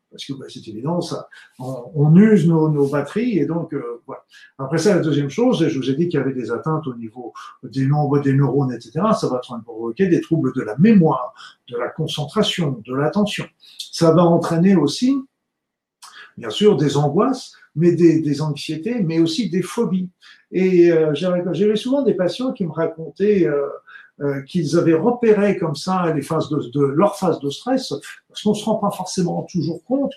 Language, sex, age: French, male, 50-69